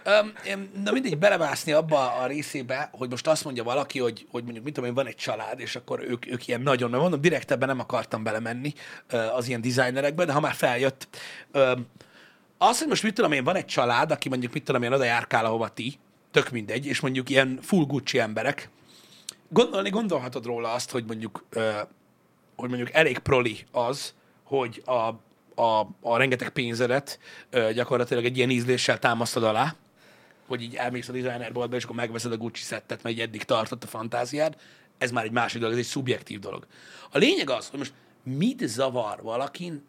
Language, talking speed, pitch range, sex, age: Hungarian, 185 wpm, 120-155 Hz, male, 30-49